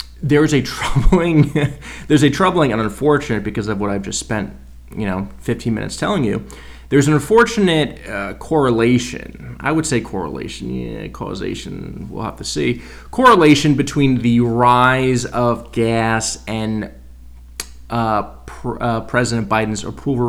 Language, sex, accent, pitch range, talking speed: English, male, American, 110-125 Hz, 140 wpm